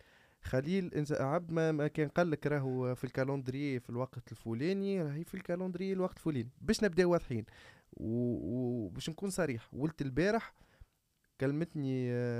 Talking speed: 135 wpm